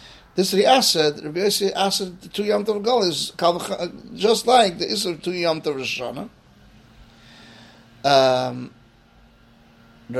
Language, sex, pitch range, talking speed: English, male, 130-180 Hz, 100 wpm